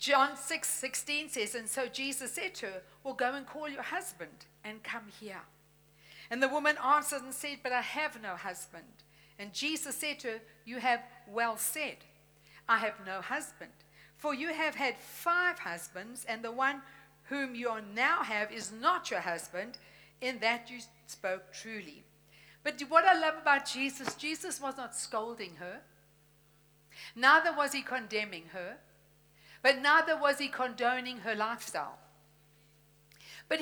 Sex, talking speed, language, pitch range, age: female, 160 wpm, English, 215-290 Hz, 60-79